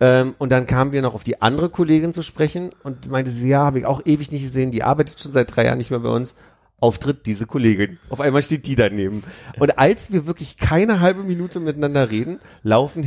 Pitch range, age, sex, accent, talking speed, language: 100-130 Hz, 40-59, male, German, 225 wpm, German